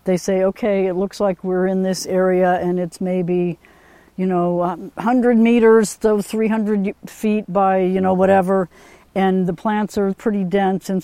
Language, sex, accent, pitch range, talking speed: English, female, American, 175-200 Hz, 170 wpm